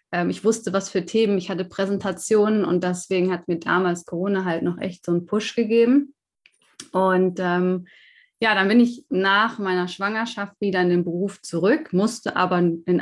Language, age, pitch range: German, 20-39, 175-210 Hz